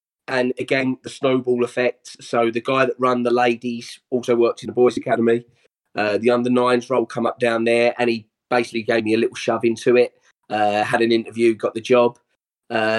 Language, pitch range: English, 110-125 Hz